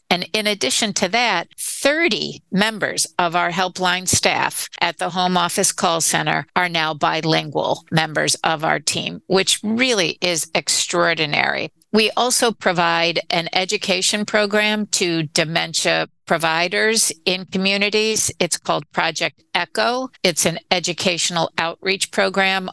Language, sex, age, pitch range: English, female, 50-69, 165-195 Hz